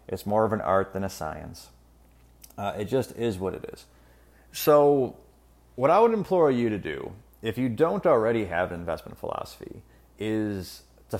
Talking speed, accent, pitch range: 175 wpm, American, 70-120 Hz